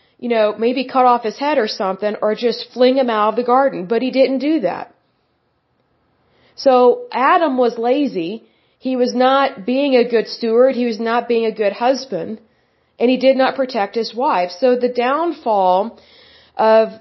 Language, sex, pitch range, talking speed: English, female, 215-255 Hz, 180 wpm